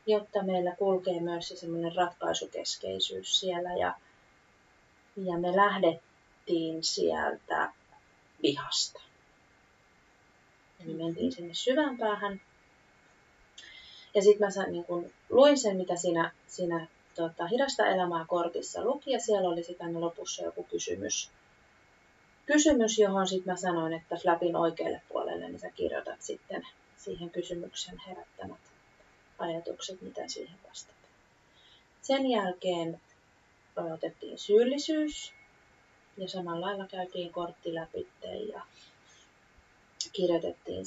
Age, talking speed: 30-49, 105 wpm